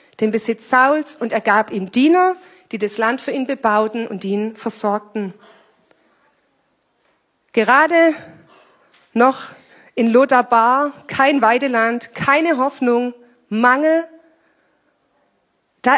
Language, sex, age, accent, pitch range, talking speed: German, female, 40-59, German, 215-275 Hz, 100 wpm